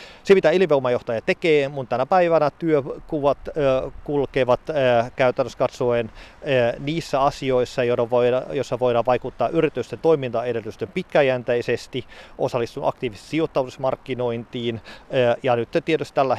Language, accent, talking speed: Finnish, native, 115 wpm